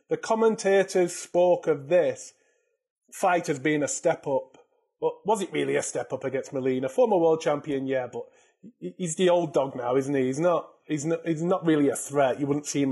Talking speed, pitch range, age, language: 200 wpm, 155-220 Hz, 30-49, English